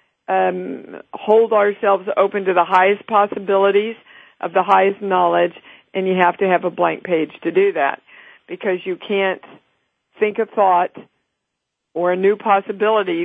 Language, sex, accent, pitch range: English, female, American, 175-215 Hz